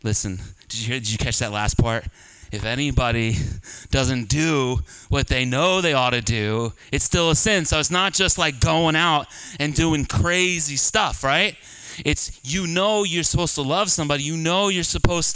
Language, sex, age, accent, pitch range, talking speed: English, male, 30-49, American, 120-200 Hz, 190 wpm